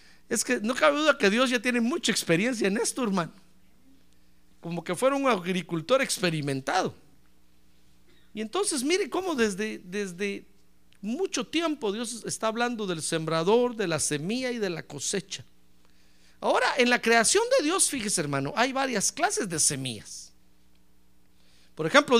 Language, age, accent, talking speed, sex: Spanish, 50-69, Mexican, 150 wpm, male